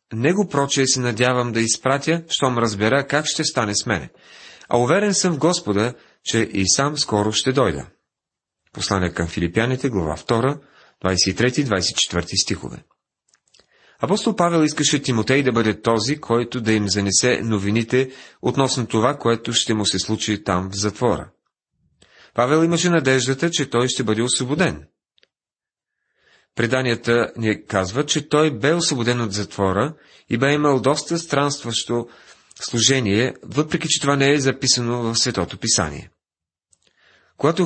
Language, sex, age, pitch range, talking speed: Bulgarian, male, 30-49, 105-140 Hz, 140 wpm